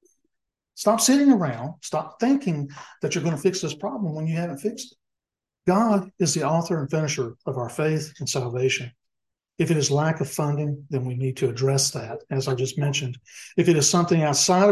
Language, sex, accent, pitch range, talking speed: English, male, American, 130-175 Hz, 200 wpm